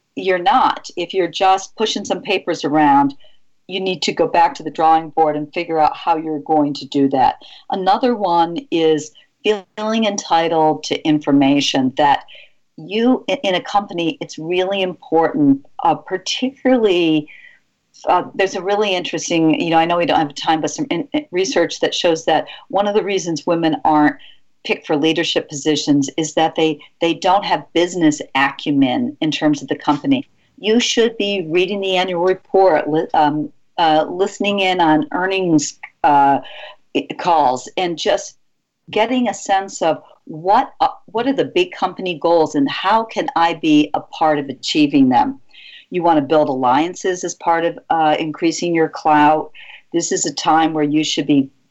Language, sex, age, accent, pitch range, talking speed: English, female, 50-69, American, 155-215 Hz, 170 wpm